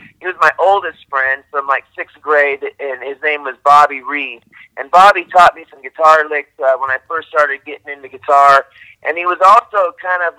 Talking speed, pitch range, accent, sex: 210 wpm, 140-175 Hz, American, male